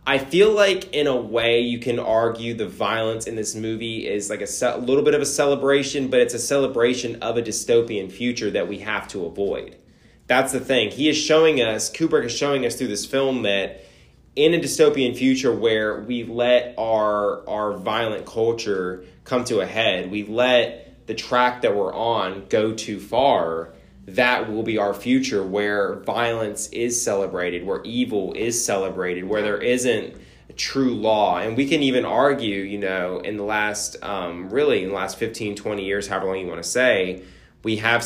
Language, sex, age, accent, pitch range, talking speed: English, male, 20-39, American, 95-120 Hz, 190 wpm